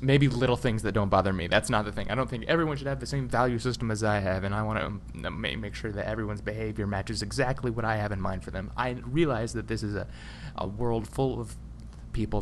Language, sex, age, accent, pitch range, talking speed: English, male, 20-39, American, 100-120 Hz, 255 wpm